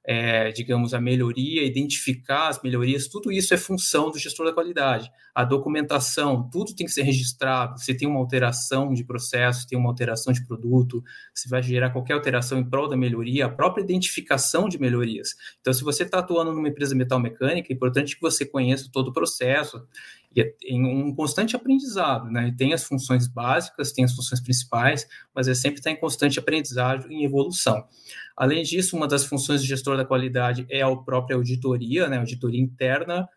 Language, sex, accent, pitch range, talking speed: Portuguese, male, Brazilian, 125-145 Hz, 190 wpm